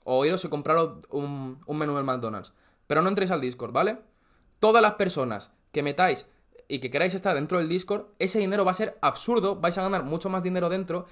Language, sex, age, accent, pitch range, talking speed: Spanish, male, 20-39, Spanish, 130-180 Hz, 215 wpm